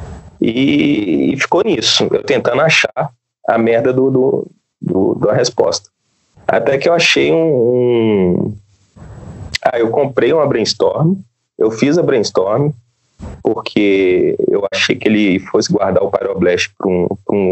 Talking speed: 140 wpm